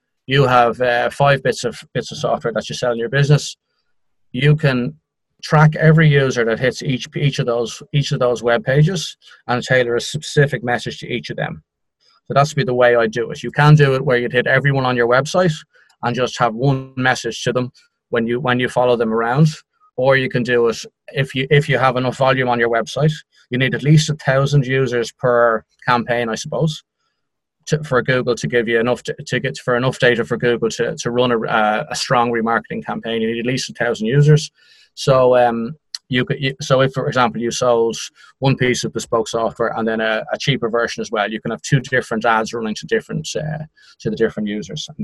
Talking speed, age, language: 225 wpm, 30-49, English